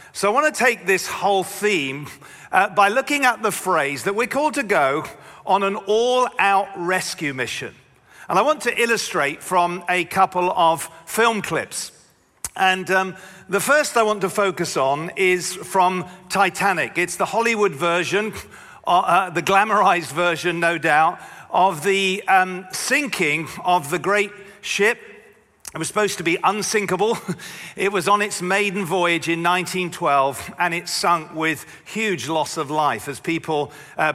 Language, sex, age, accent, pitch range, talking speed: English, male, 50-69, British, 170-200 Hz, 160 wpm